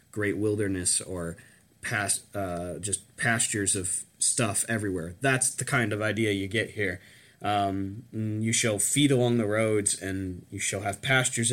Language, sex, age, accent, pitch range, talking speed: English, male, 20-39, American, 100-120 Hz, 155 wpm